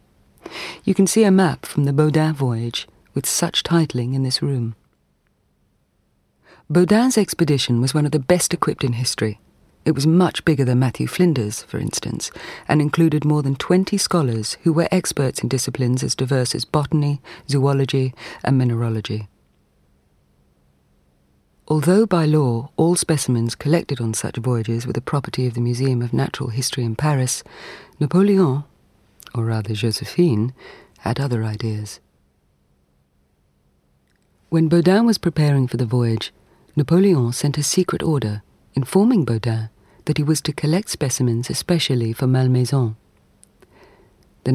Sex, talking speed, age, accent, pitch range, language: female, 140 wpm, 40-59, British, 115-155 Hz, English